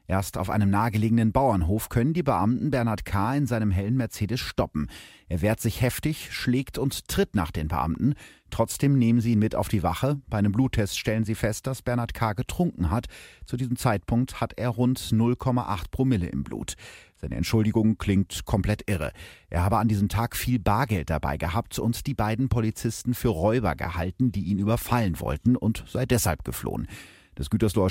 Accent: German